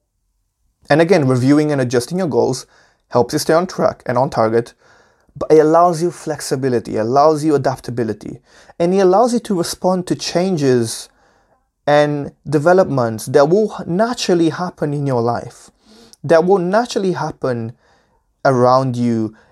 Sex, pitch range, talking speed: male, 120-160 Hz, 140 wpm